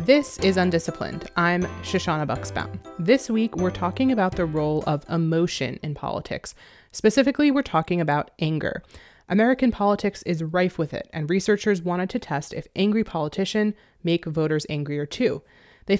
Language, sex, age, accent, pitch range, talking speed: English, female, 20-39, American, 155-205 Hz, 155 wpm